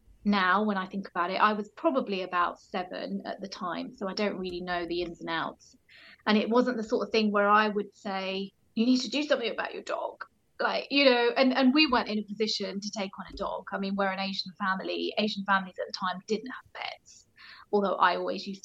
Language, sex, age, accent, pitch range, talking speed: English, female, 30-49, British, 200-250 Hz, 240 wpm